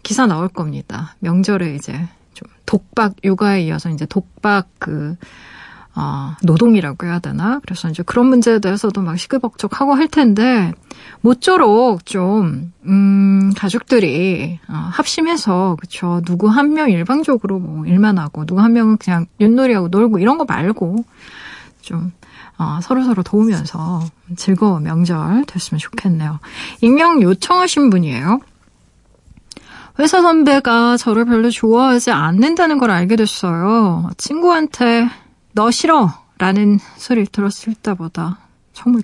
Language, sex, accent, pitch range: Korean, female, native, 175-235 Hz